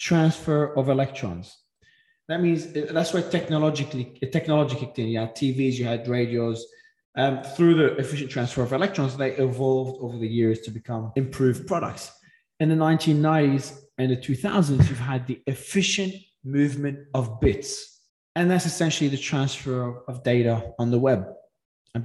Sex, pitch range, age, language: male, 125-165 Hz, 20-39, English